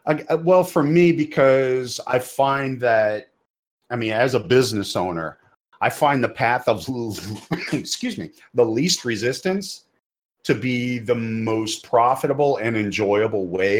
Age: 40-59